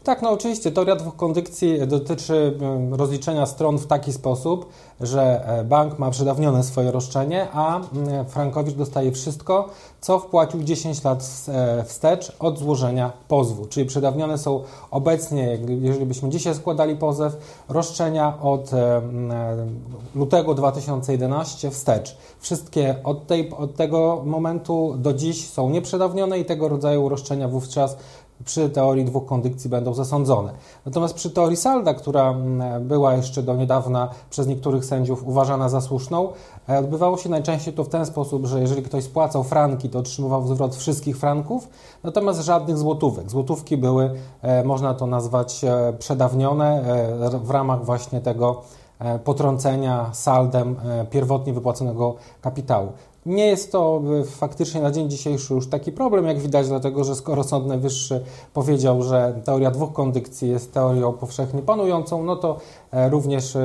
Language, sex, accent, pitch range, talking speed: Polish, male, native, 130-155 Hz, 135 wpm